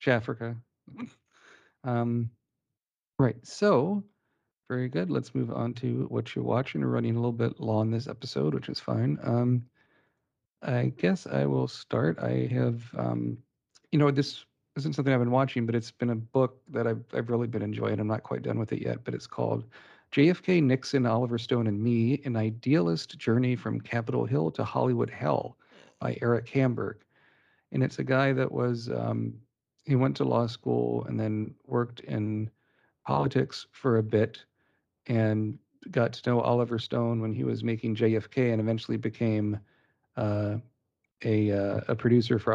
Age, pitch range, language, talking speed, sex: 40-59, 110-130 Hz, English, 170 wpm, male